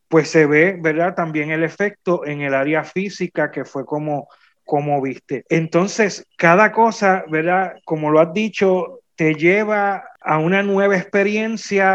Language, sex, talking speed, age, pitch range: Spanish, male, 150 wpm, 30-49, 150-185 Hz